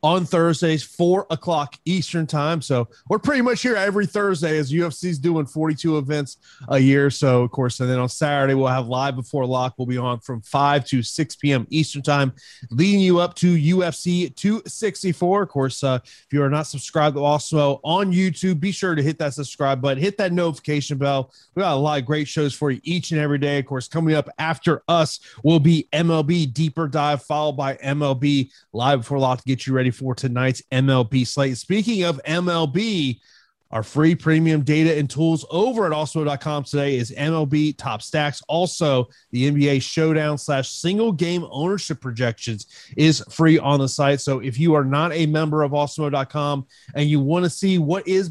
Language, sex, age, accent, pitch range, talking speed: English, male, 30-49, American, 135-170 Hz, 190 wpm